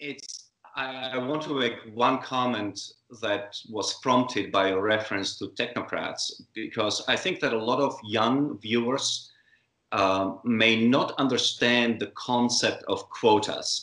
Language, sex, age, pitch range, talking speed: English, male, 30-49, 95-120 Hz, 140 wpm